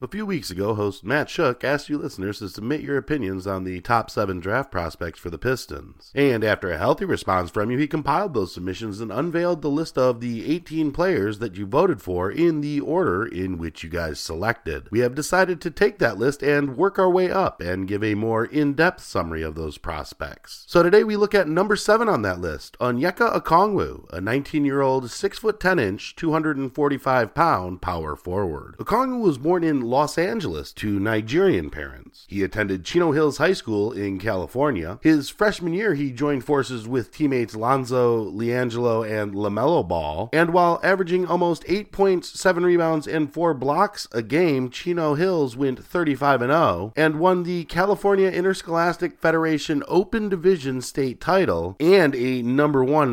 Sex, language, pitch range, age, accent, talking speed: male, English, 110-170 Hz, 40-59, American, 175 wpm